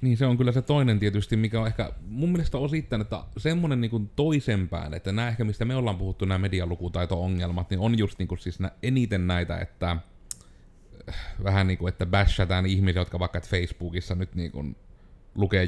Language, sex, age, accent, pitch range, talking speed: Finnish, male, 30-49, native, 90-120 Hz, 180 wpm